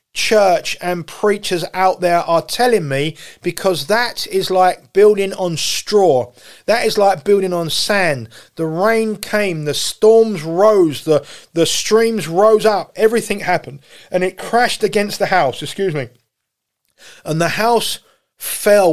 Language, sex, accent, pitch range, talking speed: English, male, British, 150-195 Hz, 145 wpm